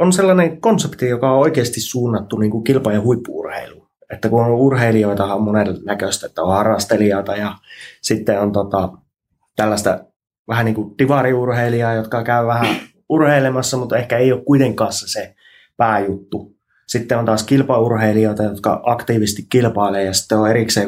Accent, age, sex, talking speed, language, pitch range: native, 20-39, male, 140 wpm, Finnish, 100-120 Hz